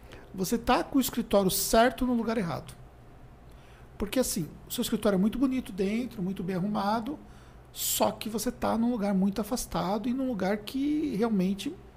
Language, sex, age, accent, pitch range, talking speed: Portuguese, male, 50-69, Brazilian, 180-235 Hz, 170 wpm